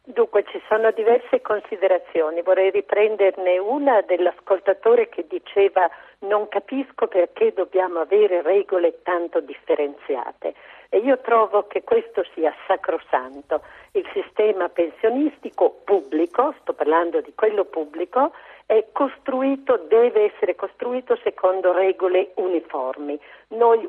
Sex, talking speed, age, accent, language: female, 110 wpm, 50-69, native, Italian